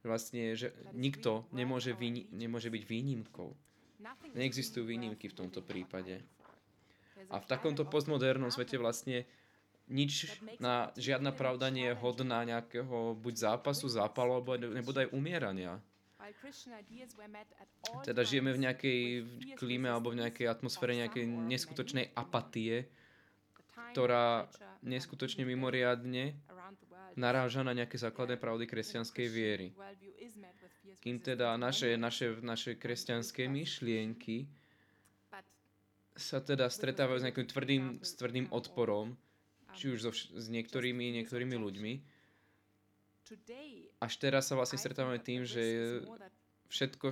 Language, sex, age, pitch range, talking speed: Slovak, male, 20-39, 115-135 Hz, 110 wpm